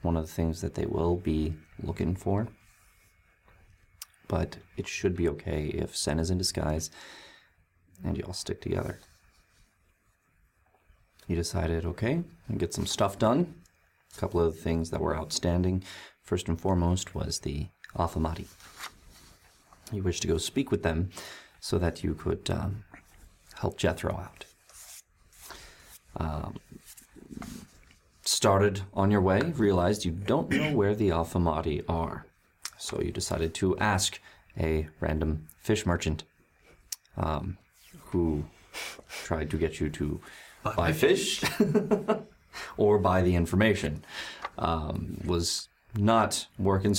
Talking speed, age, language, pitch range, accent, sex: 130 wpm, 30-49, English, 80-95 Hz, American, male